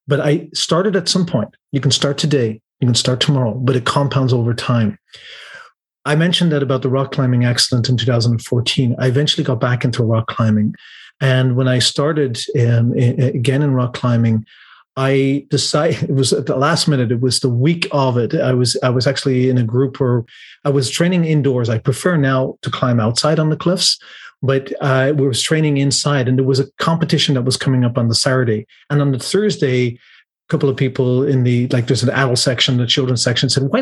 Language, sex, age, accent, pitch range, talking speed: English, male, 40-59, Canadian, 125-150 Hz, 215 wpm